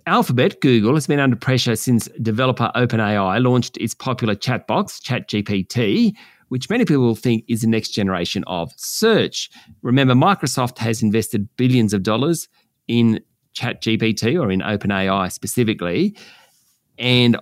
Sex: male